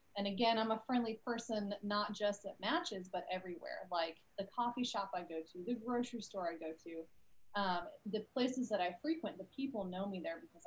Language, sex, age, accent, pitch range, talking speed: English, female, 30-49, American, 190-235 Hz, 210 wpm